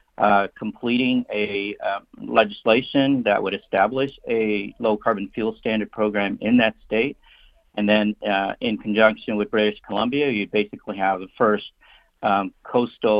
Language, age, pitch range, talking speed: English, 50-69, 100-110 Hz, 145 wpm